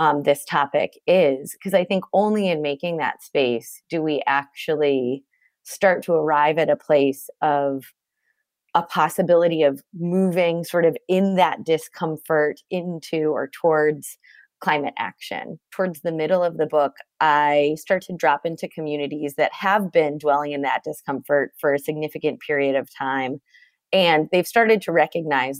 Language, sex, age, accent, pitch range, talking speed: English, female, 30-49, American, 145-190 Hz, 155 wpm